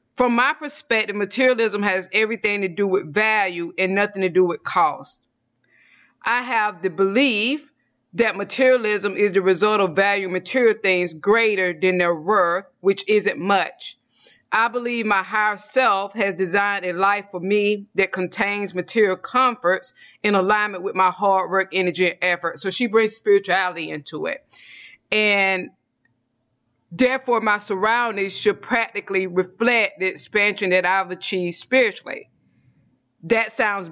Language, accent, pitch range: English, American, 185-215 Hz